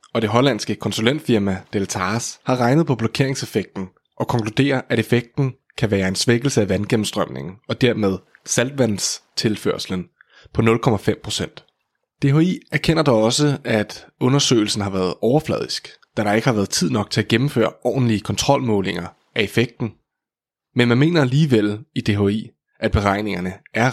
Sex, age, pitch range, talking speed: male, 20-39, 105-130 Hz, 140 wpm